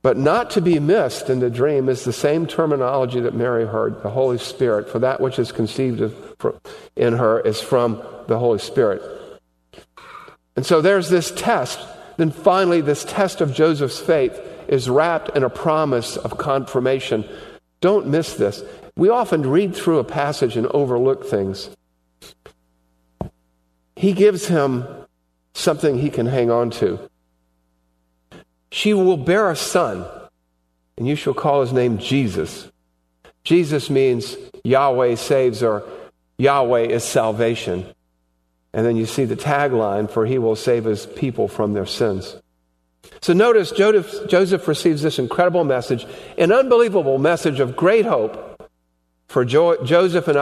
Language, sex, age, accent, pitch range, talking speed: English, male, 50-69, American, 105-170 Hz, 145 wpm